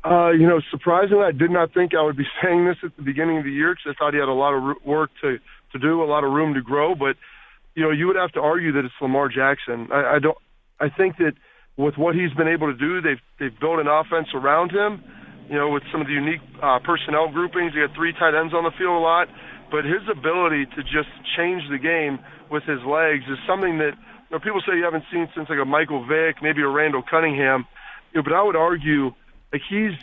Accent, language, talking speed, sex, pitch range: American, English, 255 wpm, male, 150-175 Hz